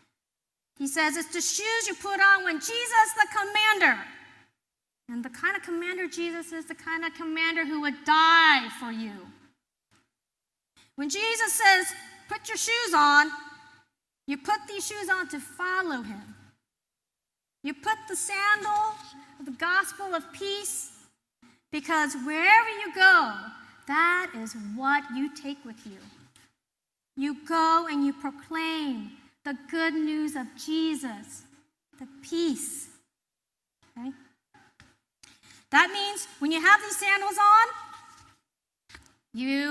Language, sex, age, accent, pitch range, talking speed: English, female, 40-59, American, 270-365 Hz, 130 wpm